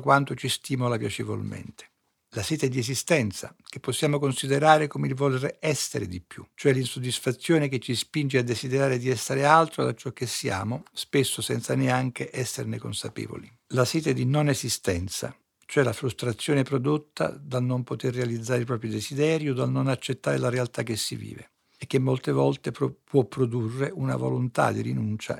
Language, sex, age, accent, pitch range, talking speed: Italian, male, 60-79, native, 115-145 Hz, 170 wpm